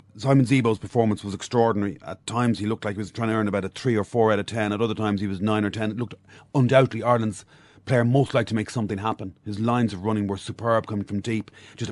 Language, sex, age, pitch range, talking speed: English, male, 30-49, 105-125 Hz, 260 wpm